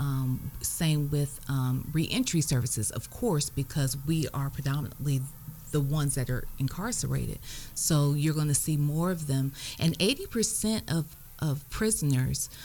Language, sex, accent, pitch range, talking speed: English, female, American, 135-165 Hz, 140 wpm